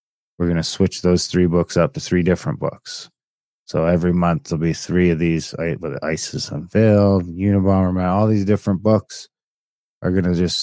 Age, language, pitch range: 20-39, English, 85-105 Hz